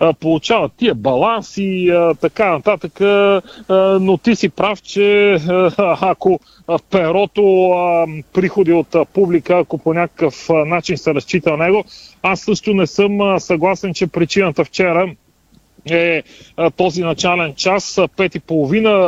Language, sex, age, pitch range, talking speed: Bulgarian, male, 40-59, 160-195 Hz, 145 wpm